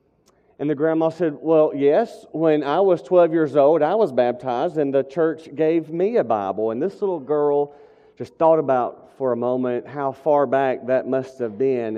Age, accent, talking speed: 40-59, American, 195 wpm